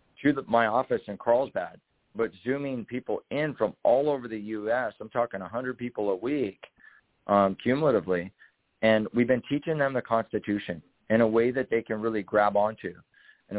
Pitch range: 105-120 Hz